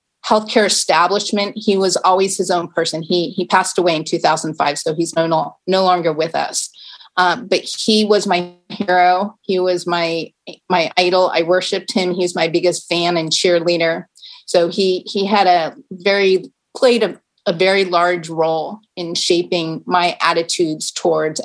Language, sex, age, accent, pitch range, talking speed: English, female, 30-49, American, 170-190 Hz, 170 wpm